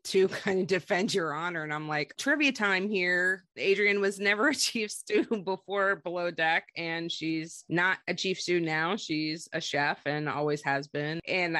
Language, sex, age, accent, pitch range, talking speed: English, female, 30-49, American, 155-195 Hz, 185 wpm